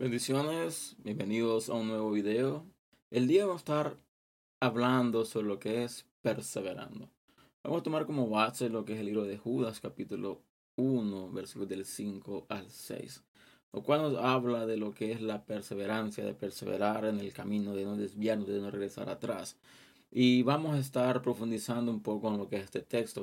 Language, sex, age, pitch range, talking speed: Spanish, male, 20-39, 100-120 Hz, 185 wpm